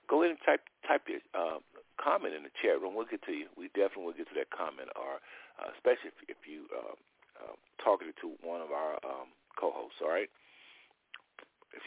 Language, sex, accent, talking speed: English, male, American, 205 wpm